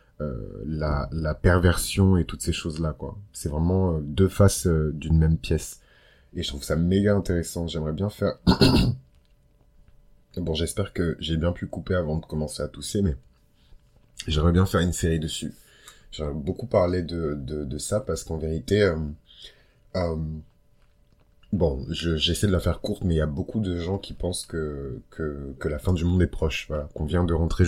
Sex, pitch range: male, 75-90 Hz